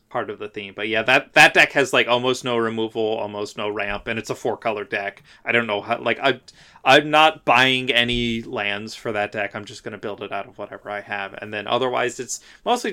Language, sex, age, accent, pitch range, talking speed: English, male, 30-49, American, 105-125 Hz, 240 wpm